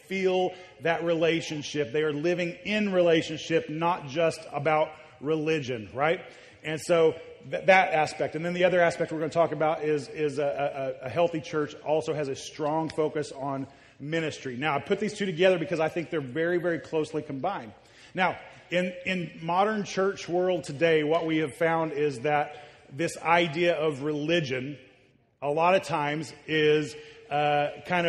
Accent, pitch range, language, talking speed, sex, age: American, 145-175 Hz, English, 170 wpm, male, 30-49